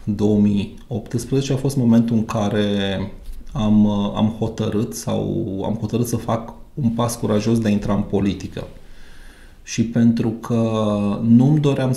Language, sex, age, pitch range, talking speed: Romanian, male, 30-49, 100-115 Hz, 135 wpm